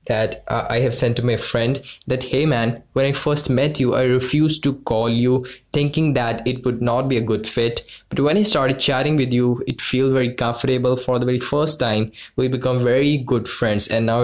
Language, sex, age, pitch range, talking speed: English, male, 20-39, 115-140 Hz, 220 wpm